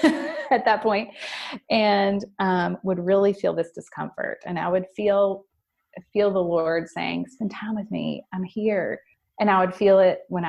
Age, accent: 30-49, American